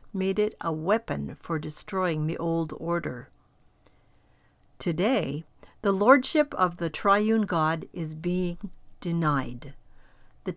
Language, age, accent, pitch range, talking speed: English, 60-79, American, 150-210 Hz, 115 wpm